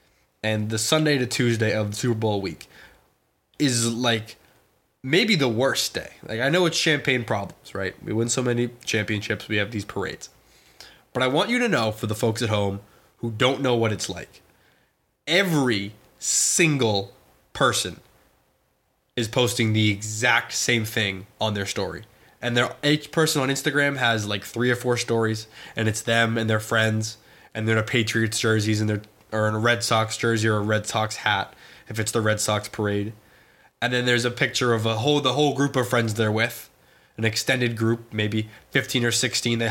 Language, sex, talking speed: English, male, 190 wpm